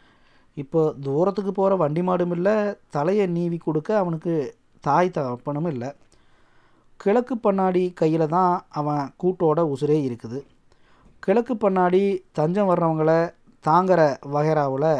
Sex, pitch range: male, 145-185 Hz